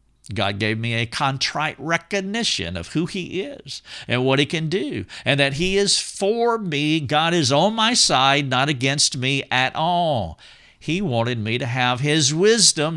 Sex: male